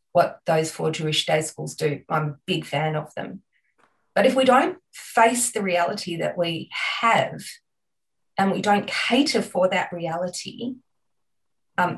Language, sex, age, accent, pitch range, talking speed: English, female, 30-49, Australian, 165-215 Hz, 155 wpm